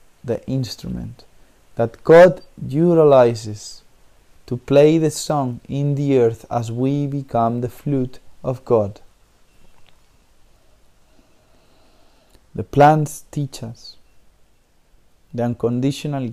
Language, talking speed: Spanish, 90 wpm